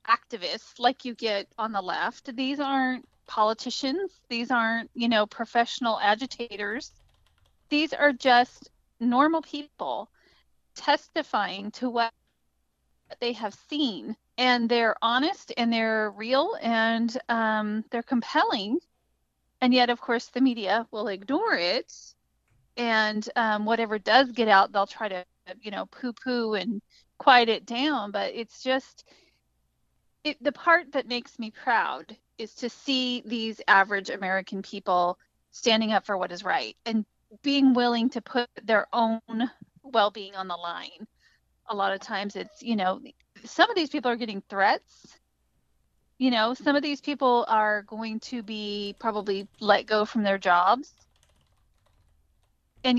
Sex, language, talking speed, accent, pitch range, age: female, English, 145 wpm, American, 205-255 Hz, 30-49